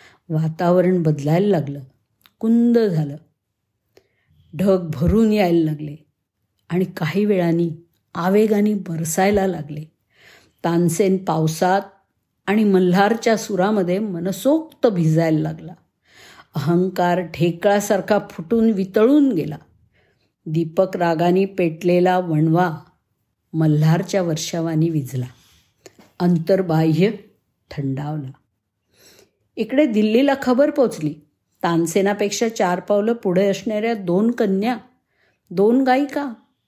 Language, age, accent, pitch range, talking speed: Marathi, 50-69, native, 165-210 Hz, 80 wpm